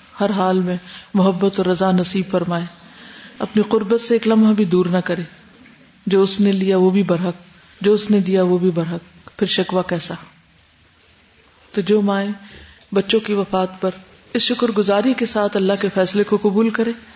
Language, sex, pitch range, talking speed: Urdu, female, 180-215 Hz, 180 wpm